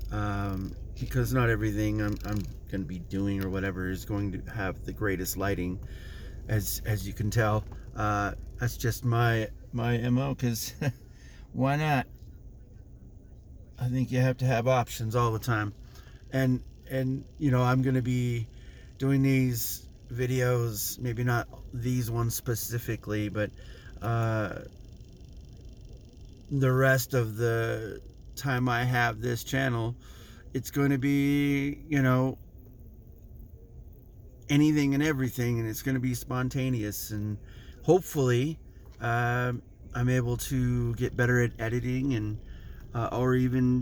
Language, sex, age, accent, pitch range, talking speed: English, male, 30-49, American, 105-130 Hz, 135 wpm